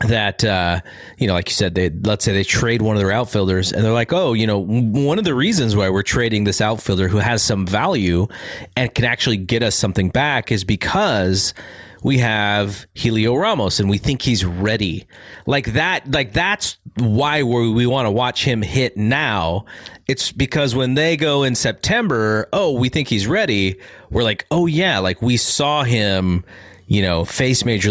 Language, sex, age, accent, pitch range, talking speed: English, male, 30-49, American, 100-130 Hz, 195 wpm